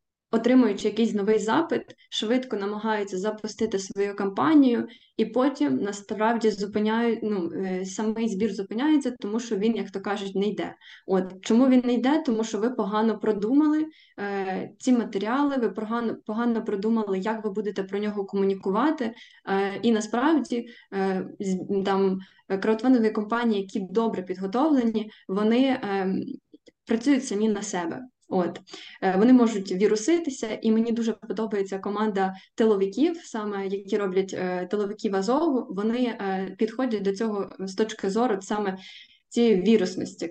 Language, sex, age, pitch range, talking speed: Ukrainian, female, 20-39, 195-235 Hz, 130 wpm